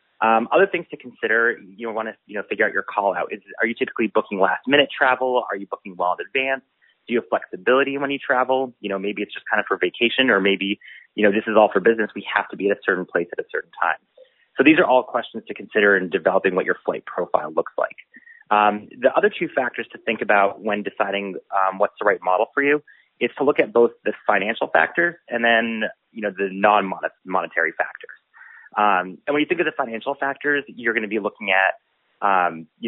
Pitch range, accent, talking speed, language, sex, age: 100-135 Hz, American, 235 wpm, English, male, 30-49